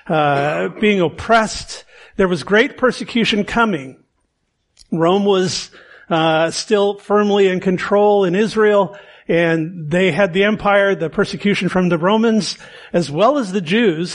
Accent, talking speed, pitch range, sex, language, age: American, 135 wpm, 200-245 Hz, male, English, 50-69